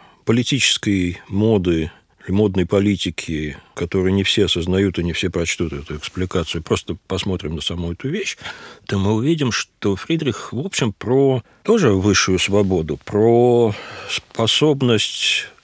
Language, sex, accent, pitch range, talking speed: Russian, male, native, 95-125 Hz, 125 wpm